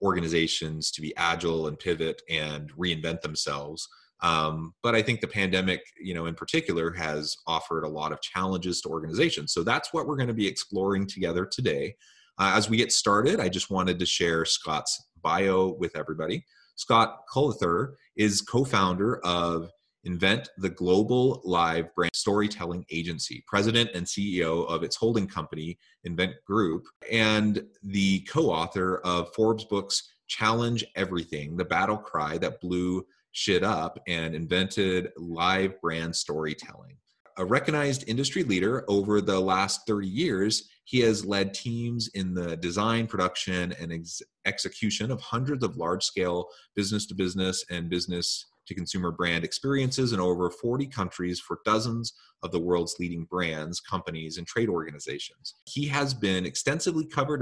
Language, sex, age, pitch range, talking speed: English, male, 30-49, 85-110 Hz, 150 wpm